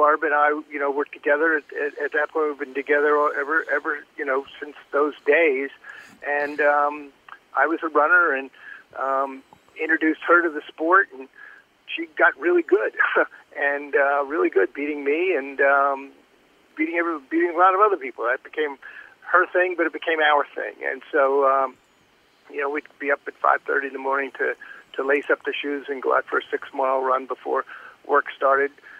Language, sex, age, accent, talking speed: English, male, 50-69, American, 190 wpm